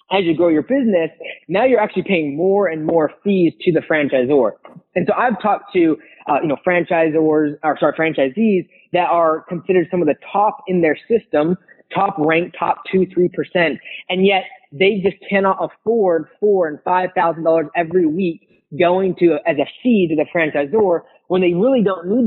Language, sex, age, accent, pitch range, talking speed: English, male, 20-39, American, 155-195 Hz, 185 wpm